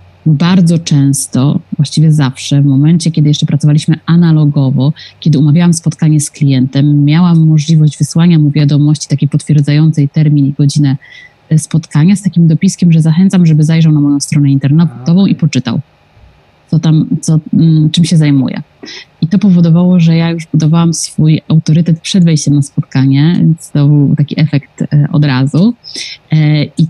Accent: native